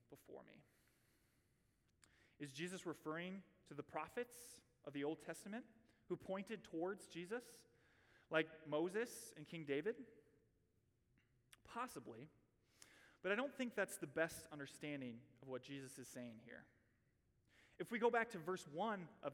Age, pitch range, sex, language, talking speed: 30-49, 135-190 Hz, male, English, 135 wpm